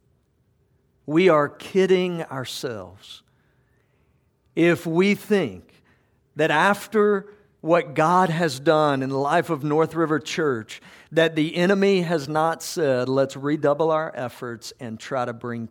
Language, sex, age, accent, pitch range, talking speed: English, male, 50-69, American, 150-200 Hz, 130 wpm